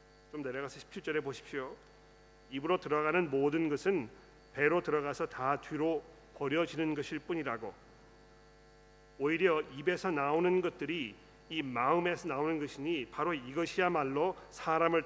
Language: Korean